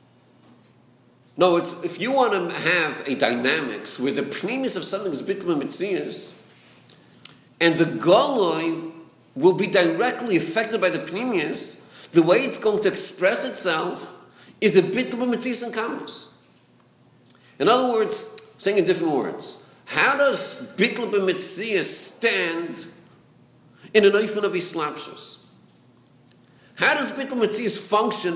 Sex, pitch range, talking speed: male, 175-240 Hz, 135 wpm